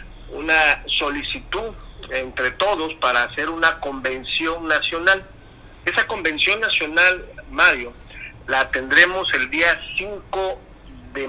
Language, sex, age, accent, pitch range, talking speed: Spanish, male, 50-69, Mexican, 130-180 Hz, 100 wpm